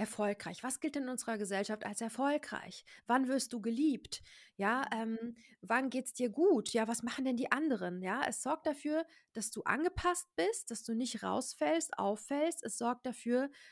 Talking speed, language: 185 wpm, German